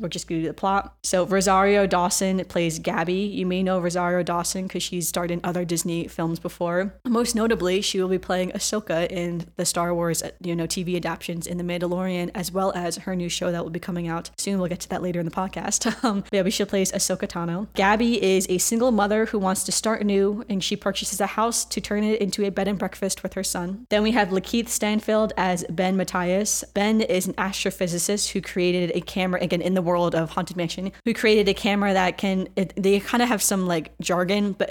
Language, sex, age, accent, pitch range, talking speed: English, female, 10-29, American, 175-205 Hz, 230 wpm